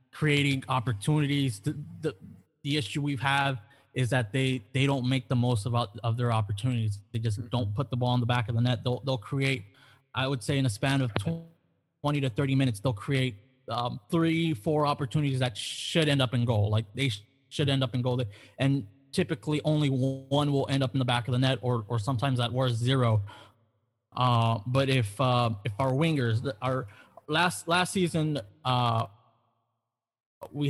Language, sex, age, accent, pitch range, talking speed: English, male, 20-39, American, 120-140 Hz, 190 wpm